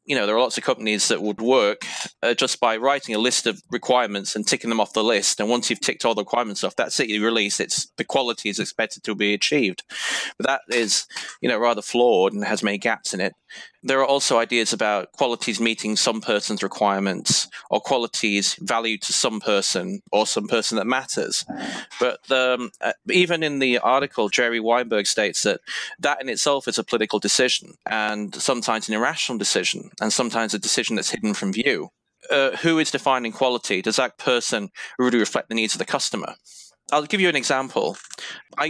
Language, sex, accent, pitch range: English, male, British, 105-130 Hz